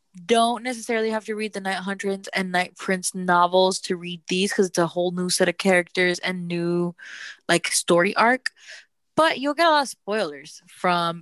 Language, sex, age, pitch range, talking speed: English, female, 20-39, 165-195 Hz, 195 wpm